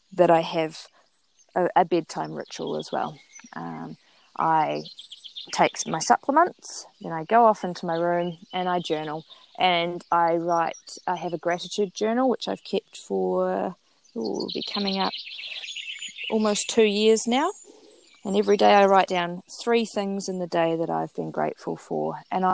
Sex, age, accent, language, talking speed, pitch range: female, 20-39, Australian, English, 160 wpm, 165-205 Hz